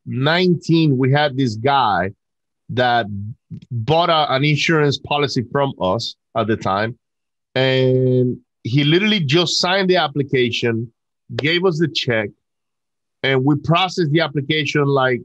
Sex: male